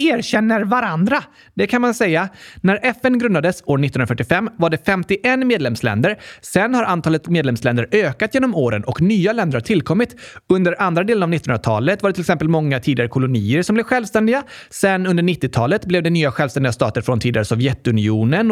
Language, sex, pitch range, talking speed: Swedish, male, 140-230 Hz, 170 wpm